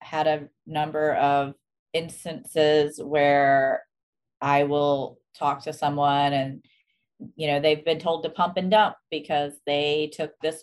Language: English